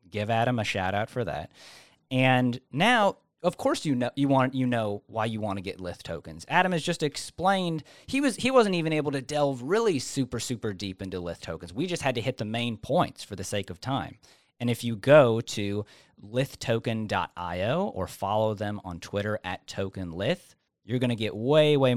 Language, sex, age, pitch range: English, male, 30-49, 95-135 Hz